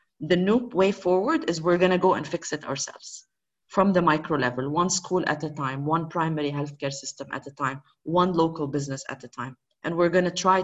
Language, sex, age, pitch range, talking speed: English, female, 30-49, 155-190 Hz, 225 wpm